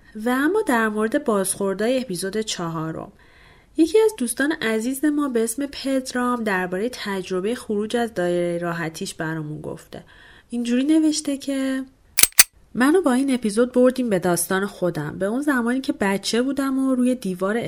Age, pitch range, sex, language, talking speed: 30-49, 185-260 Hz, female, Persian, 150 wpm